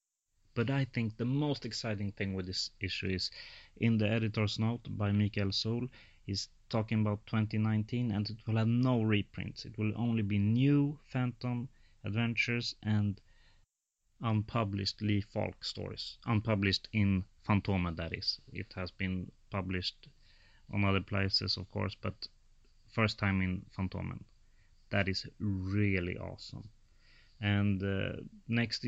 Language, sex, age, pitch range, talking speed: English, male, 30-49, 100-110 Hz, 135 wpm